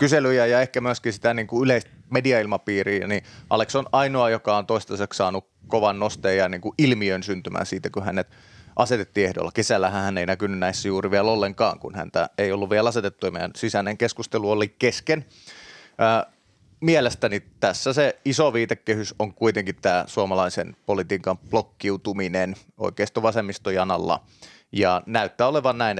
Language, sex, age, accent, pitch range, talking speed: Finnish, male, 30-49, native, 95-120 Hz, 150 wpm